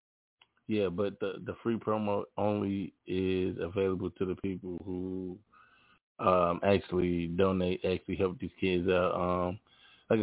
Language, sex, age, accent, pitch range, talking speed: English, male, 20-39, American, 90-100 Hz, 135 wpm